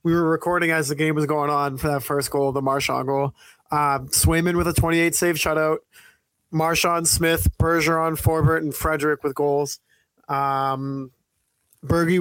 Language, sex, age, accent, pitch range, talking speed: English, male, 30-49, American, 145-170 Hz, 160 wpm